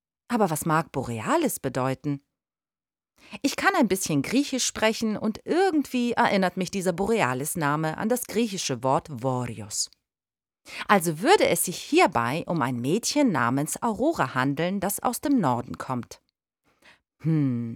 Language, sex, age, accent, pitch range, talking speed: German, female, 40-59, German, 145-235 Hz, 130 wpm